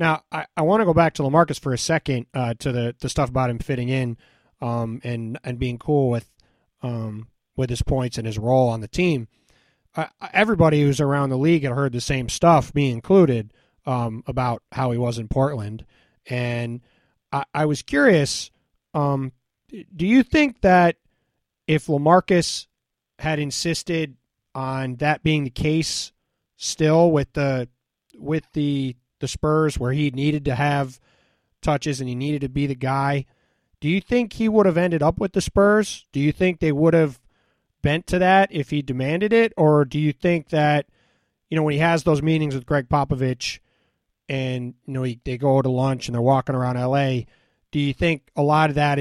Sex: male